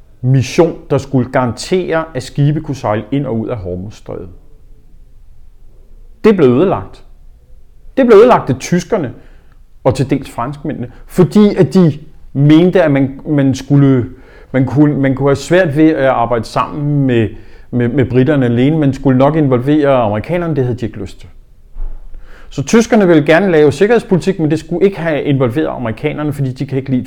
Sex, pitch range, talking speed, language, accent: male, 120-155 Hz, 160 wpm, Danish, native